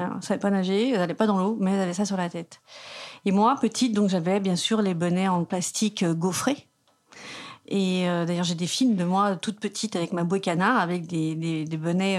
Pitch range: 175-205 Hz